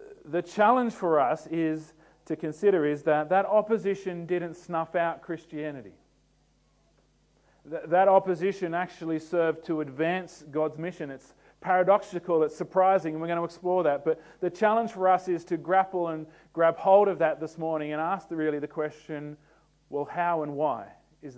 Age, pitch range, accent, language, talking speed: 40-59, 150-180 Hz, Australian, English, 165 wpm